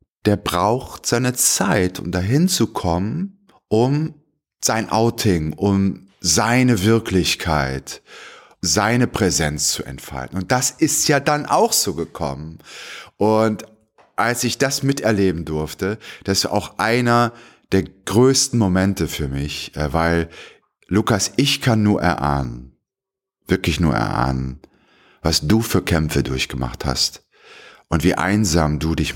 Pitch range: 75-110 Hz